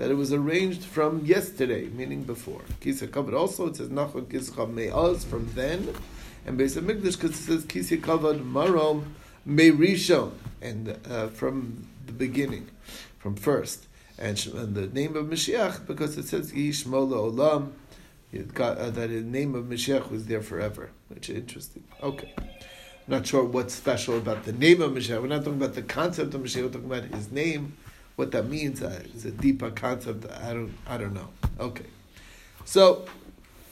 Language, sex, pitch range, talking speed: English, male, 115-150 Hz, 155 wpm